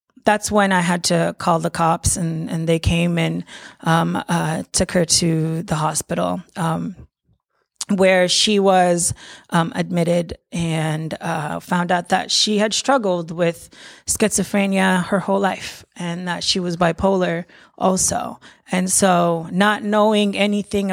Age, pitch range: 30-49, 170-195 Hz